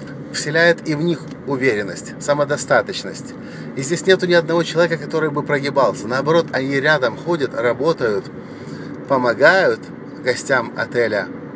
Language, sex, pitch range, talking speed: English, male, 130-170 Hz, 120 wpm